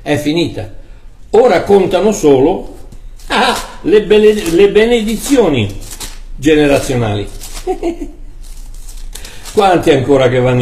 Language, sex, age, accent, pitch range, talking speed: Italian, male, 60-79, native, 155-240 Hz, 85 wpm